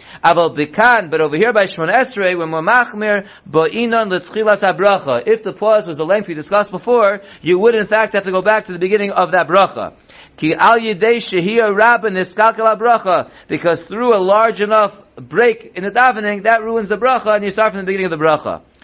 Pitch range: 180-225 Hz